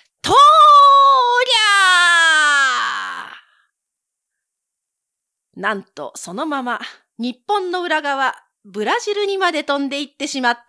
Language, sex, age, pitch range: Japanese, female, 40-59, 230-360 Hz